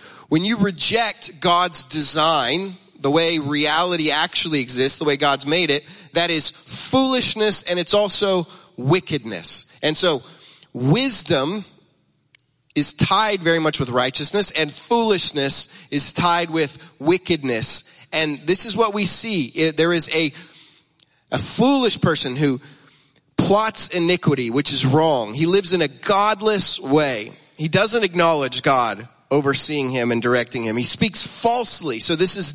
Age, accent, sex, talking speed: 30-49, American, male, 140 wpm